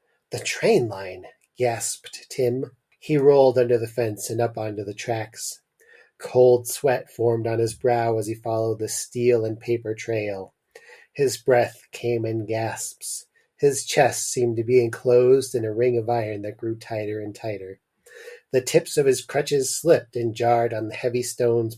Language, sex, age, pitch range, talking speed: English, male, 30-49, 110-130 Hz, 170 wpm